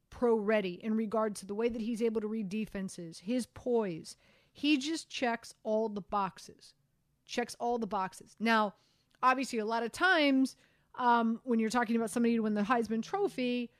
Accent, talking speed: American, 180 wpm